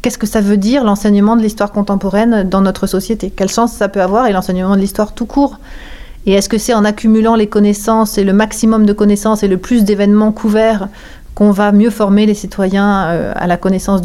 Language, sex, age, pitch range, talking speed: French, female, 30-49, 185-215 Hz, 215 wpm